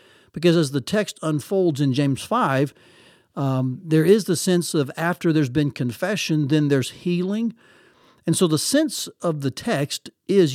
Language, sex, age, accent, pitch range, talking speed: English, male, 60-79, American, 140-175 Hz, 165 wpm